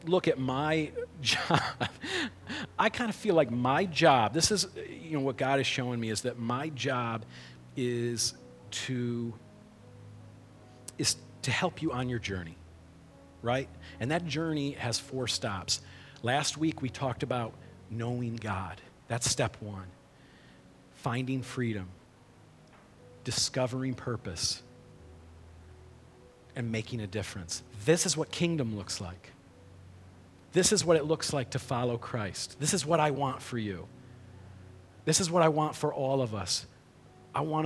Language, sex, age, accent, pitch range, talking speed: English, male, 40-59, American, 105-155 Hz, 145 wpm